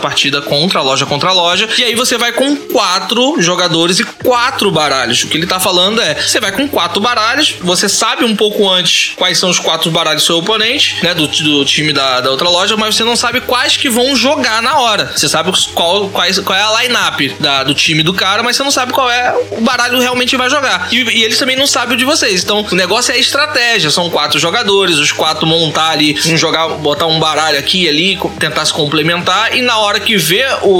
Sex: male